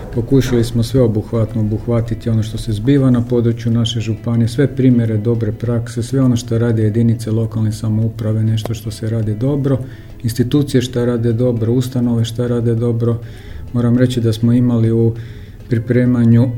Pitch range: 110-125 Hz